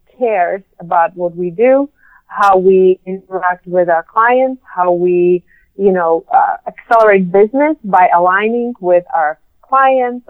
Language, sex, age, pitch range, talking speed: English, female, 30-49, 190-245 Hz, 135 wpm